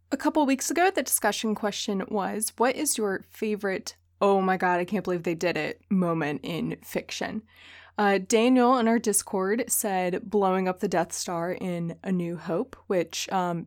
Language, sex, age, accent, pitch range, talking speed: English, female, 20-39, American, 165-210 Hz, 180 wpm